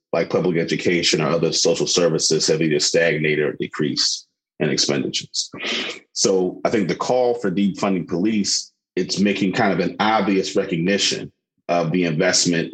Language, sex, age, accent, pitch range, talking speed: English, male, 40-59, American, 80-95 Hz, 150 wpm